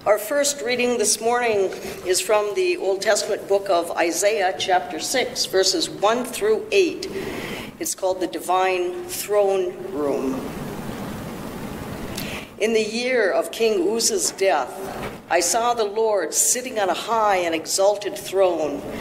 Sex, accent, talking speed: female, American, 135 wpm